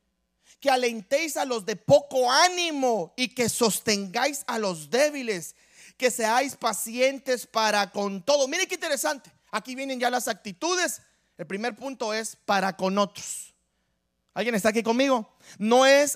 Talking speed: 150 wpm